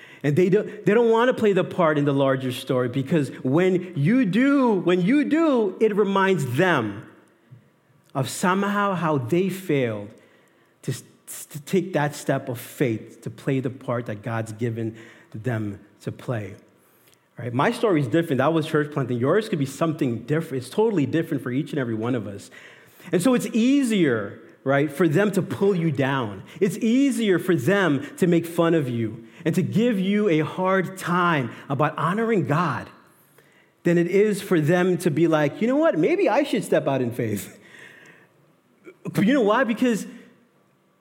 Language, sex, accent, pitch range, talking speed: English, male, American, 135-210 Hz, 180 wpm